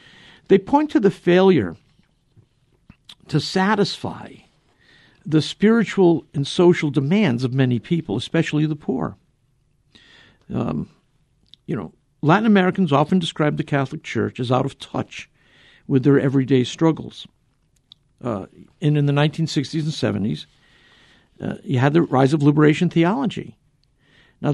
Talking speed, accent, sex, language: 125 wpm, American, male, English